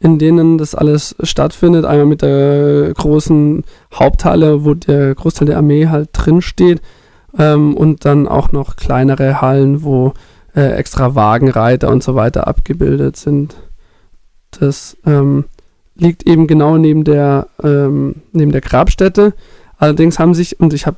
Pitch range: 135-155 Hz